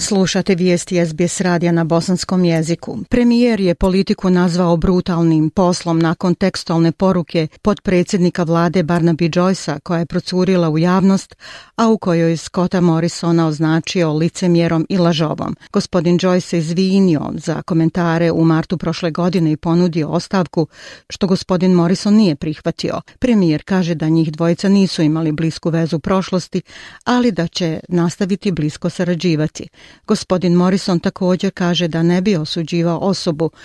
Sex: female